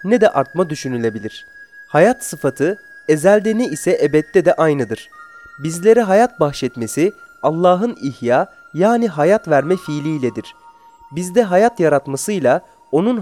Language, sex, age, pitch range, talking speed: English, male, 30-49, 135-220 Hz, 115 wpm